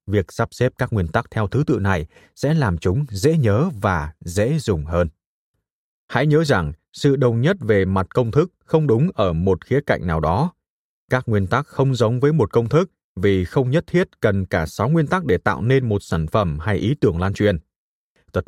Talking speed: 220 wpm